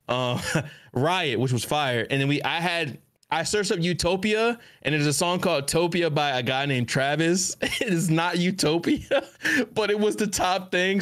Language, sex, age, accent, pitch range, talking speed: English, male, 20-39, American, 140-195 Hz, 190 wpm